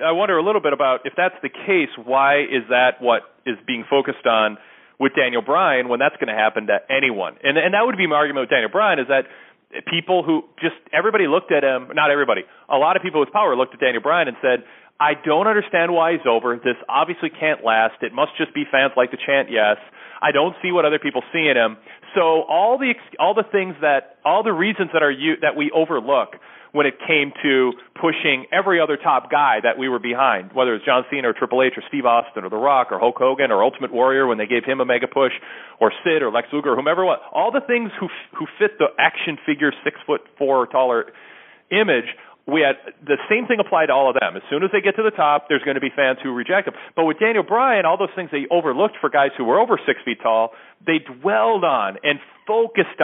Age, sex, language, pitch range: 30-49, male, English, 130-180 Hz